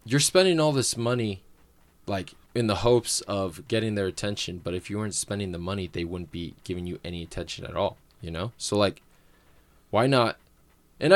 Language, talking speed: English, 195 wpm